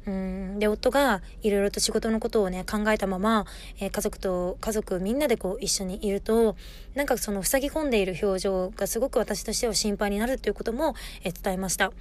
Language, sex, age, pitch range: Japanese, female, 20-39, 195-235 Hz